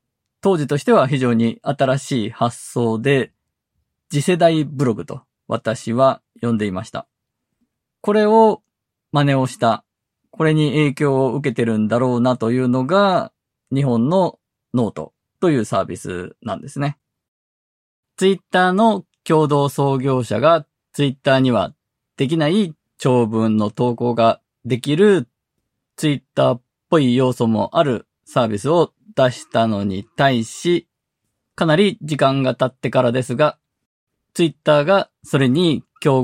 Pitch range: 115-155 Hz